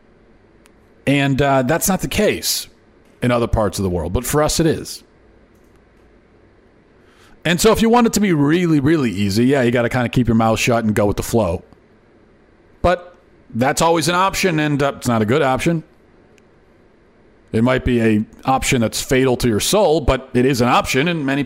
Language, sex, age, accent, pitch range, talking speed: English, male, 40-59, American, 115-150 Hz, 200 wpm